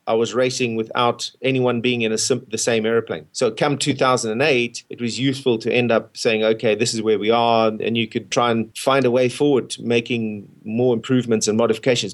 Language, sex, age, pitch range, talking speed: English, male, 30-49, 110-130 Hz, 215 wpm